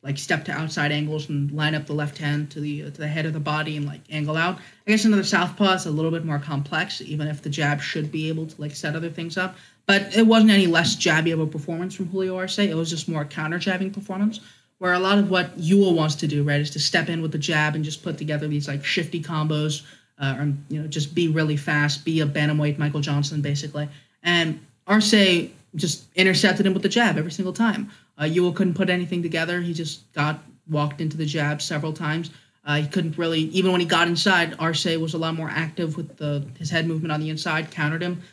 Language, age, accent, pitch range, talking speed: English, 20-39, American, 150-180 Hz, 245 wpm